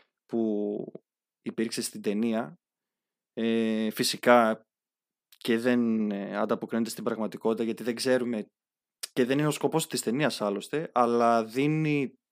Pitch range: 110-160 Hz